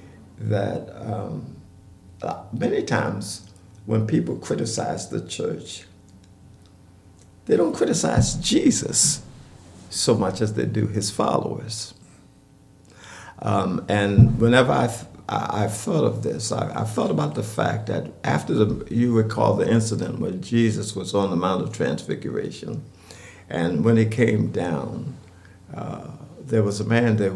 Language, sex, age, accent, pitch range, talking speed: English, male, 60-79, American, 95-115 Hz, 135 wpm